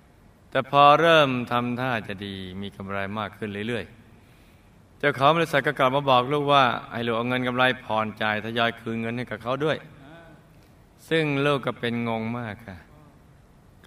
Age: 20-39